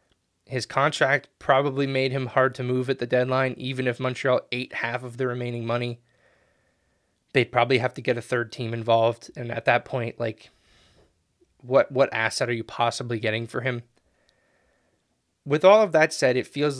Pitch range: 115-135 Hz